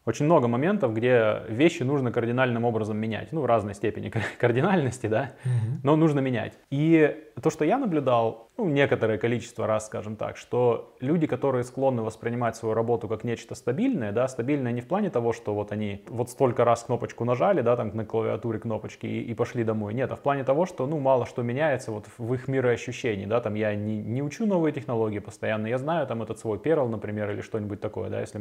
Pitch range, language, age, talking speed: 115-135 Hz, Russian, 20-39, 205 wpm